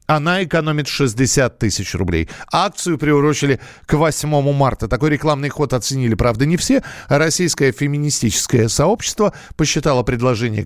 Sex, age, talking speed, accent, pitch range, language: male, 50-69, 125 wpm, native, 125-180 Hz, Russian